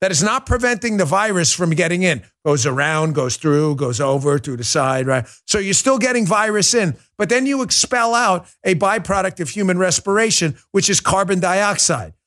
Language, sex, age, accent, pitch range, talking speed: English, male, 50-69, American, 140-195 Hz, 190 wpm